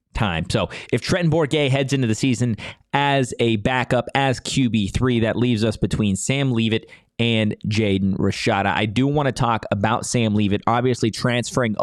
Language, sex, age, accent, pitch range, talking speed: English, male, 20-39, American, 105-125 Hz, 170 wpm